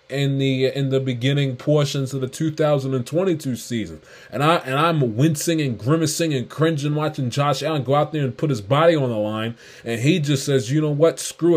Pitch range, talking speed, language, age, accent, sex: 120-145 Hz, 210 wpm, English, 20-39, American, male